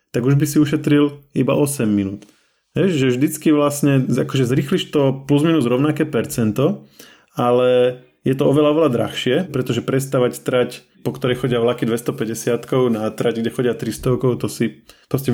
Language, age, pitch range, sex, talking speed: Slovak, 20-39, 115-135 Hz, male, 155 wpm